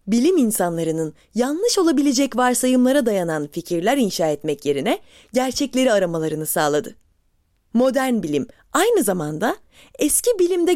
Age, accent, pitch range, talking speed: 20-39, native, 175-290 Hz, 105 wpm